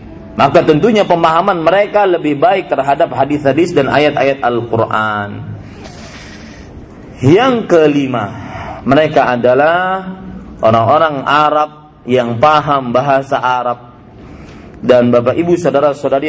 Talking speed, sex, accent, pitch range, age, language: 90 wpm, male, native, 120-170 Hz, 40-59, Indonesian